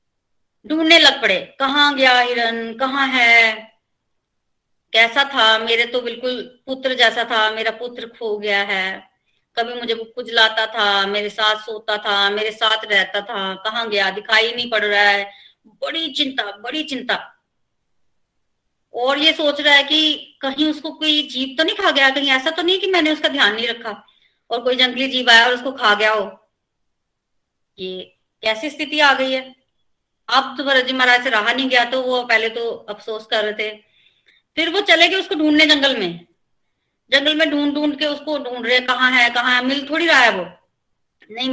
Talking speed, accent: 185 wpm, native